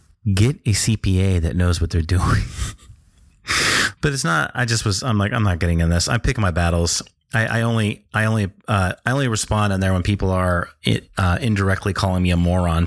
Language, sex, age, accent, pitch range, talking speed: English, male, 30-49, American, 90-110 Hz, 215 wpm